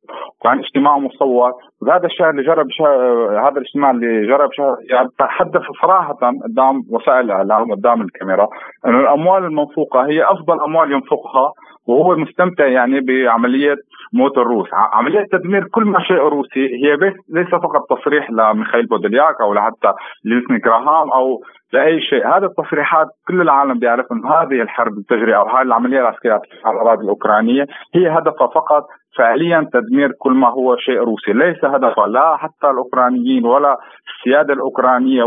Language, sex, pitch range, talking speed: Arabic, male, 125-165 Hz, 145 wpm